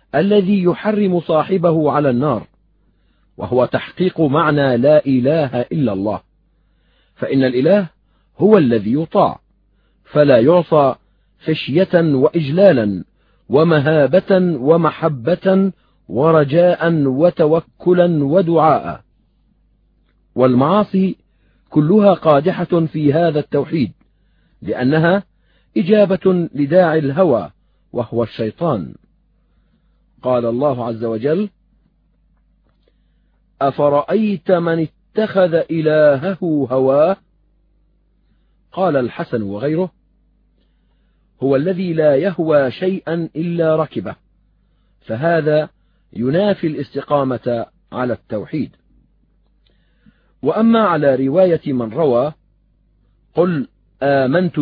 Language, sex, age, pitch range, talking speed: Arabic, male, 40-59, 130-180 Hz, 75 wpm